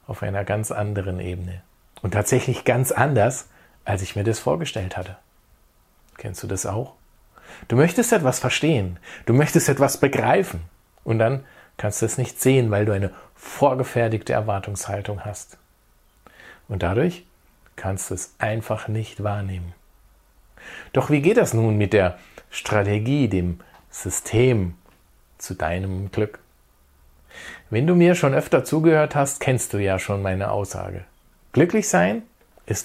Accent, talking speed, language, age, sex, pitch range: German, 140 wpm, German, 40-59, male, 95-130 Hz